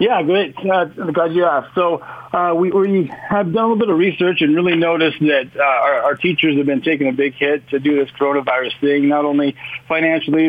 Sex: male